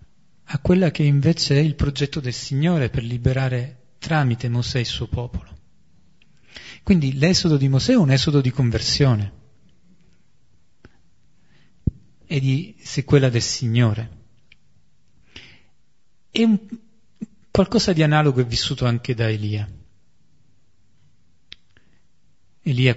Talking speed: 105 wpm